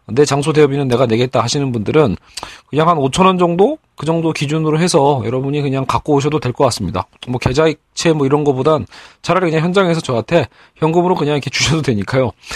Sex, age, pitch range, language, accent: male, 40-59, 125-165 Hz, Korean, native